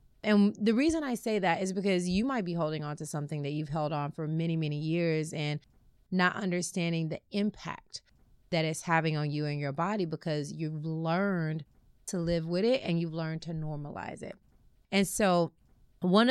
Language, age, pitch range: English, 30-49, 155-195 Hz